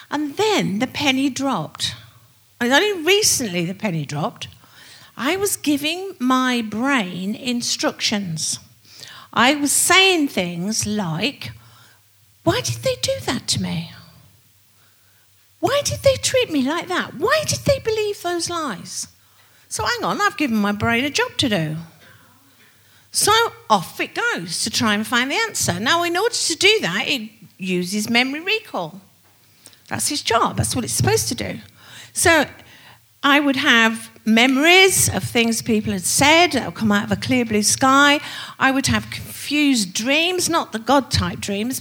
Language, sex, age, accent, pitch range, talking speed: English, female, 50-69, British, 180-300 Hz, 160 wpm